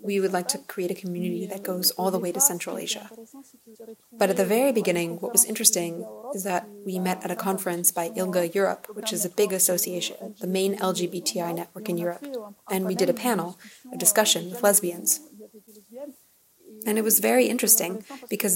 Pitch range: 180-215 Hz